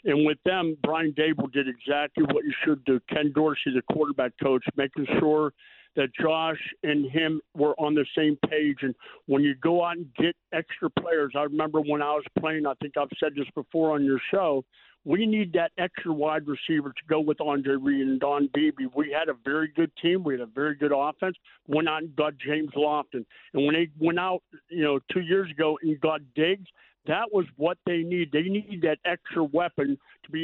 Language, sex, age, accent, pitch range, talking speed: English, male, 50-69, American, 150-175 Hz, 215 wpm